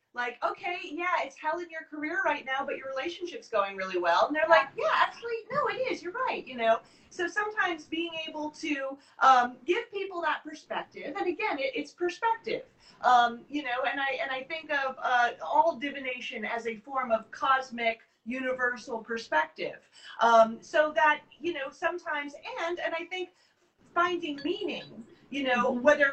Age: 30-49